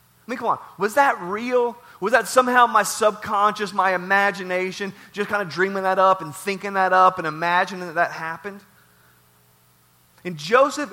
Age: 30-49